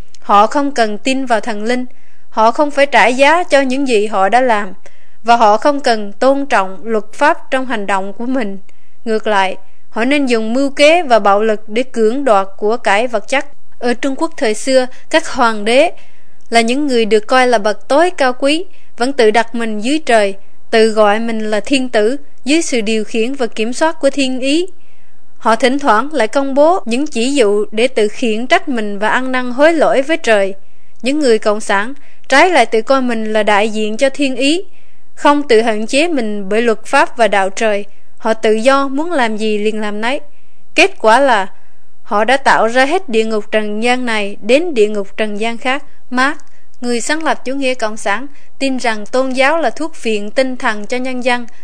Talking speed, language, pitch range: 215 wpm, Vietnamese, 220-275 Hz